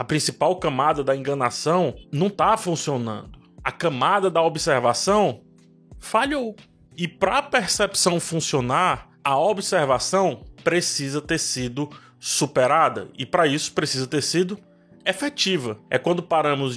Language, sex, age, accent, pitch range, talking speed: Portuguese, male, 20-39, Brazilian, 140-195 Hz, 120 wpm